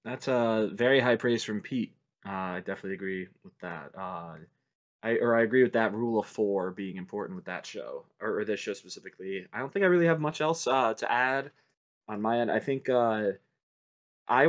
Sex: male